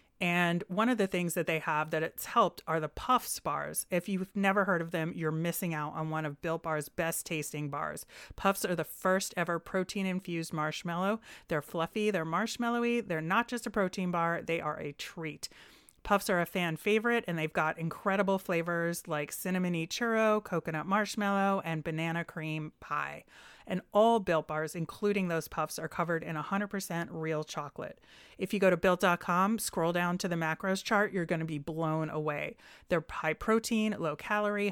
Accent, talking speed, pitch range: American, 185 wpm, 160-200 Hz